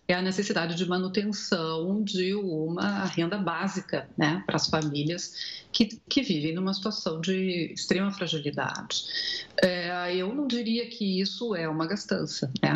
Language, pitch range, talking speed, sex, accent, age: Portuguese, 170-220 Hz, 145 wpm, female, Brazilian, 50-69